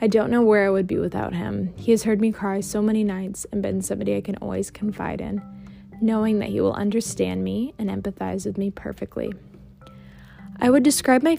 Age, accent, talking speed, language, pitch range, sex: 10-29, American, 210 wpm, English, 185-215 Hz, female